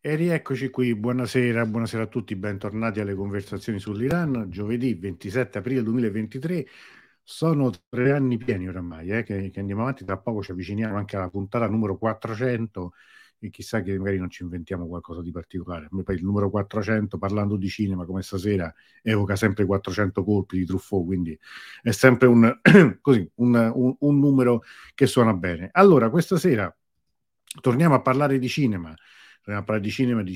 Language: Italian